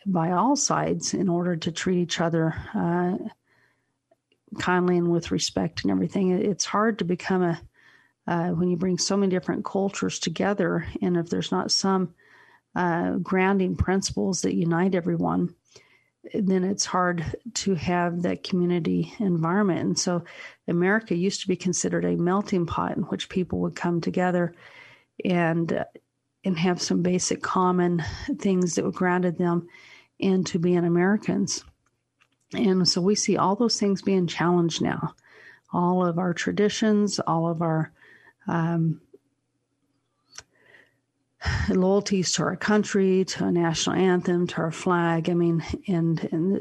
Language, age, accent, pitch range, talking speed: English, 40-59, American, 170-190 Hz, 145 wpm